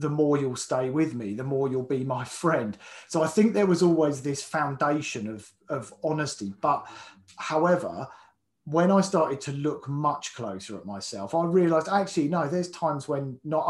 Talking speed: 185 wpm